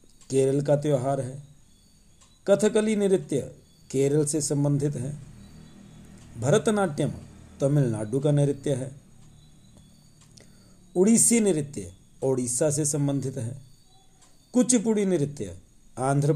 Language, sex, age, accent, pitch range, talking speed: Hindi, male, 50-69, native, 130-165 Hz, 90 wpm